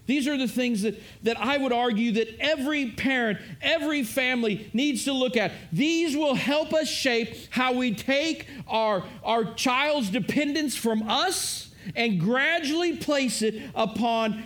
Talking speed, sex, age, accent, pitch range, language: 155 wpm, male, 50-69, American, 195-245 Hz, English